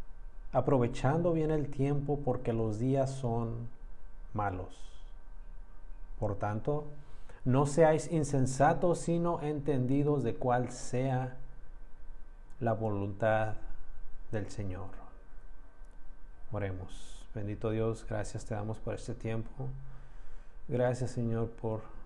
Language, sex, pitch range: Spanish, male, 95-120 Hz